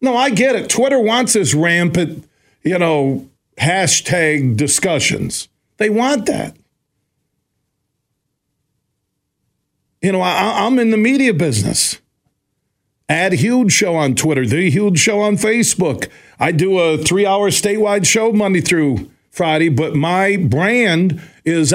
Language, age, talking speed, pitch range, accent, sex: English, 50-69, 125 wpm, 145-200 Hz, American, male